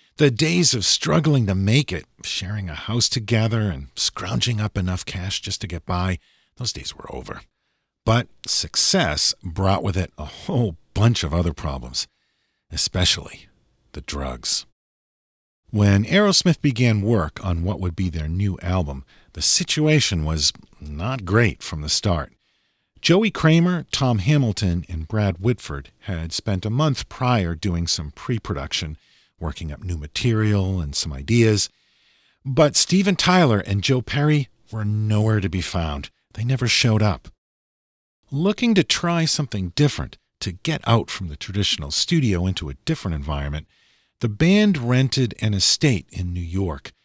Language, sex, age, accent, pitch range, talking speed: English, male, 50-69, American, 85-125 Hz, 150 wpm